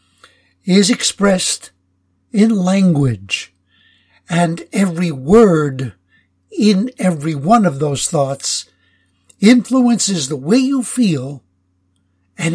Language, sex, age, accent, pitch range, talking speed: English, male, 60-79, American, 130-210 Hz, 90 wpm